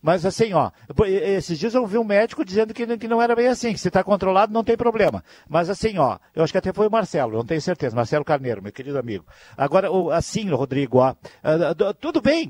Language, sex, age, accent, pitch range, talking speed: Portuguese, male, 60-79, Brazilian, 170-225 Hz, 225 wpm